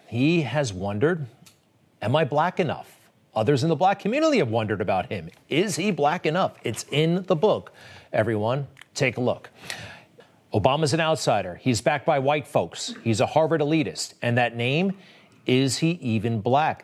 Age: 40-59